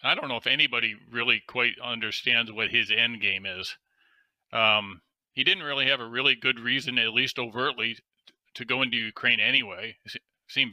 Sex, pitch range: male, 110-130 Hz